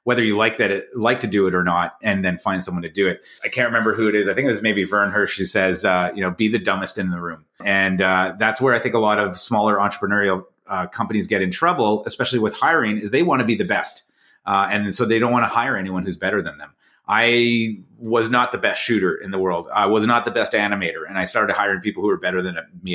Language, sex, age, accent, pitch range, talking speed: English, male, 30-49, American, 100-120 Hz, 275 wpm